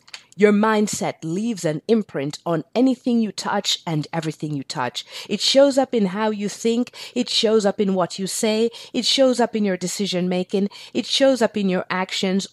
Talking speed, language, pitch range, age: 190 wpm, English, 180-240 Hz, 50-69